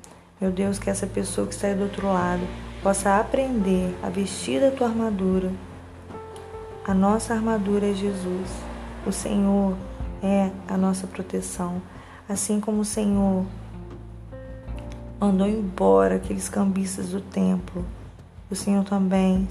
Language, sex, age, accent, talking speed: Portuguese, female, 20-39, Brazilian, 130 wpm